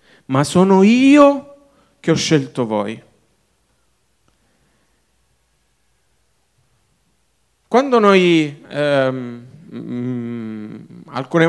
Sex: male